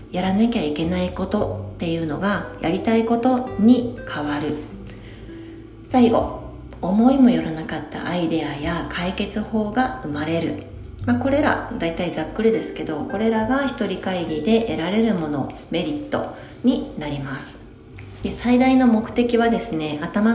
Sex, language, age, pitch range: female, Japanese, 40-59, 155-230 Hz